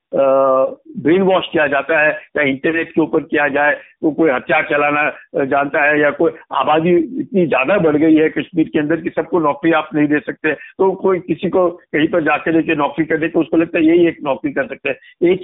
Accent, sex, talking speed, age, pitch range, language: native, male, 220 wpm, 60-79, 155-195 Hz, Hindi